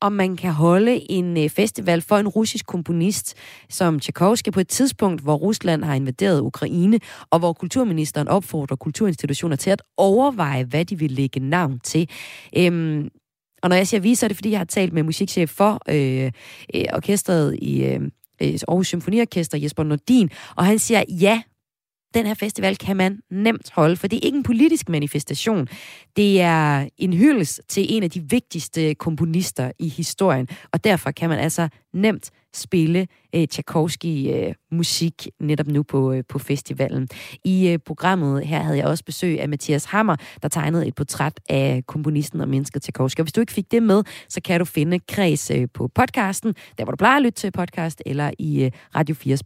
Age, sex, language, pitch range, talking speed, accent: 30-49, female, Danish, 150-200 Hz, 185 wpm, native